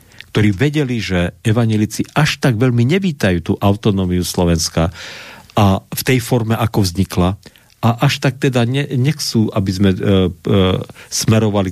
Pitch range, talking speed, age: 90-115 Hz, 145 wpm, 50-69